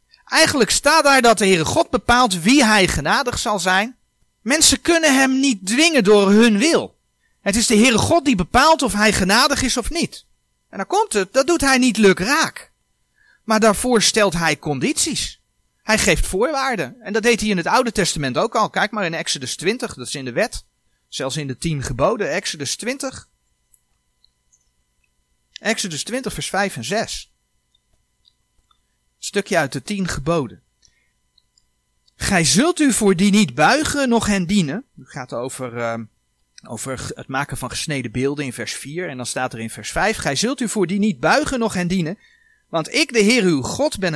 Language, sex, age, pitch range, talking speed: Dutch, male, 40-59, 145-235 Hz, 185 wpm